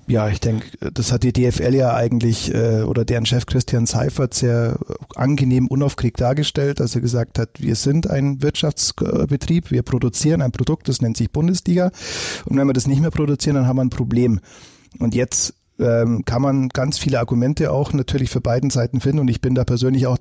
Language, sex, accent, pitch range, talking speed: German, male, German, 120-140 Hz, 200 wpm